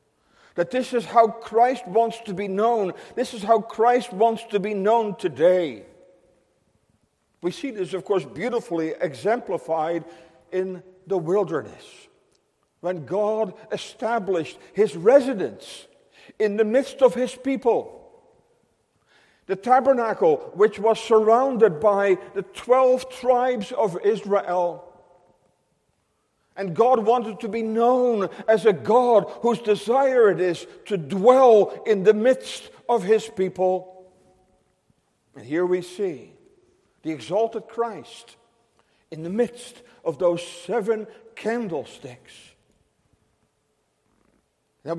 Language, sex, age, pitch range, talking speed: English, male, 50-69, 185-240 Hz, 115 wpm